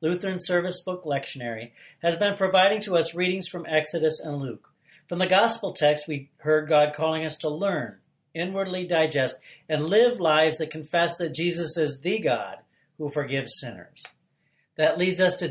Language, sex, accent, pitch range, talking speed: English, male, American, 155-190 Hz, 170 wpm